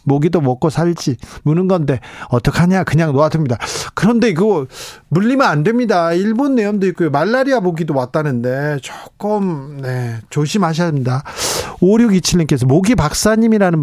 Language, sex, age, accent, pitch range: Korean, male, 40-59, native, 145-210 Hz